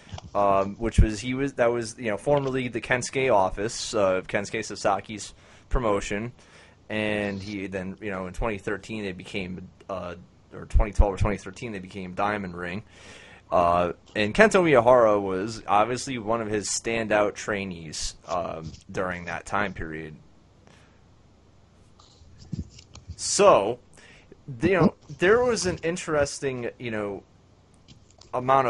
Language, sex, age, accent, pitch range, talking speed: English, male, 30-49, American, 95-120 Hz, 130 wpm